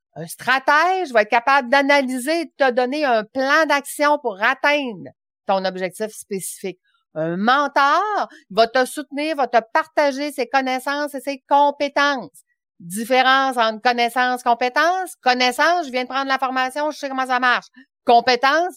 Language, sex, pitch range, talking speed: French, female, 220-280 Hz, 155 wpm